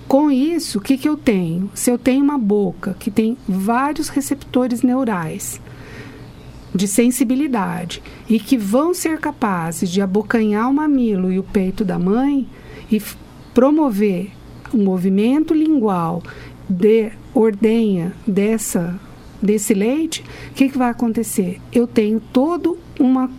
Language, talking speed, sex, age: Portuguese, 125 wpm, female, 50-69